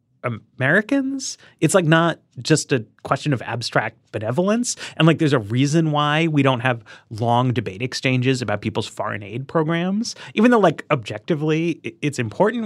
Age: 30-49